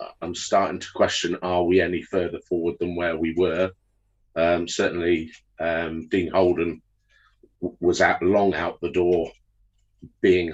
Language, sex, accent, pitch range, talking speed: English, male, British, 90-100 Hz, 140 wpm